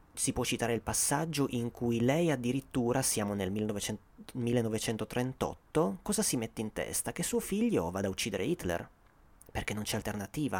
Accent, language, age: native, Italian, 30-49